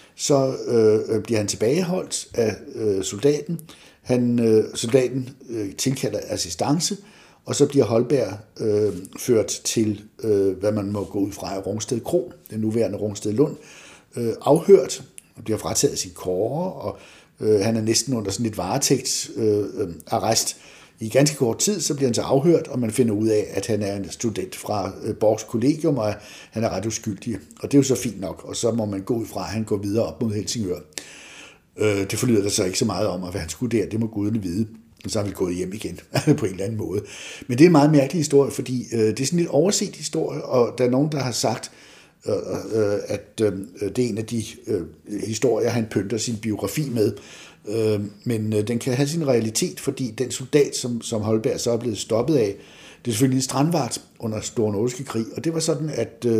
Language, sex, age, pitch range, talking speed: Danish, male, 60-79, 105-135 Hz, 210 wpm